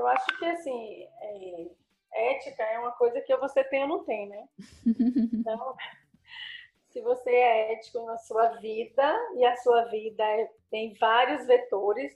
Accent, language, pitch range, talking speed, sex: Brazilian, Portuguese, 225-310 Hz, 160 wpm, female